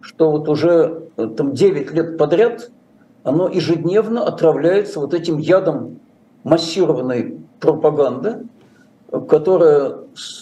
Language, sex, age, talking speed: Russian, male, 50-69, 90 wpm